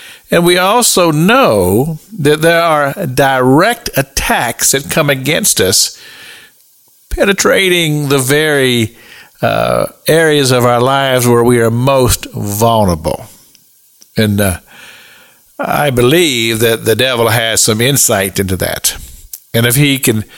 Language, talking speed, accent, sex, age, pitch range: English, 125 wpm, American, male, 50-69, 115-165 Hz